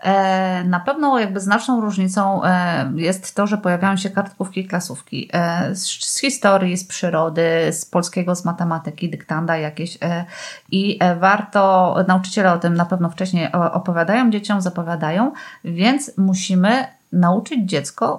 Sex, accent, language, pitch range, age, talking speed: female, native, Polish, 180-210 Hz, 30-49, 125 wpm